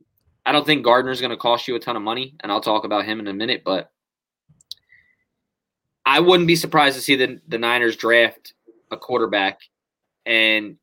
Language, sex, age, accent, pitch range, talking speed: English, male, 20-39, American, 120-155 Hz, 190 wpm